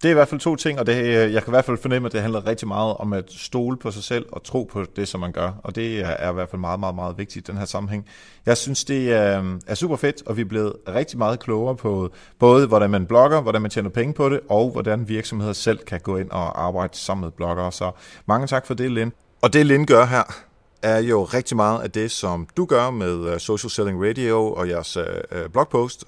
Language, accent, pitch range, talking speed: Danish, native, 95-120 Hz, 250 wpm